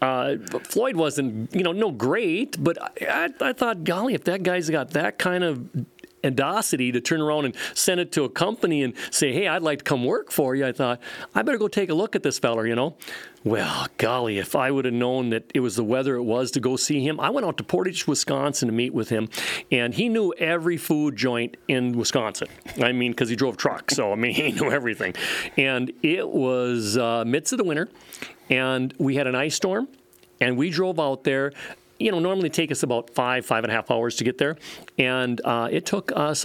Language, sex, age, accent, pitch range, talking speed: English, male, 40-59, American, 120-155 Hz, 230 wpm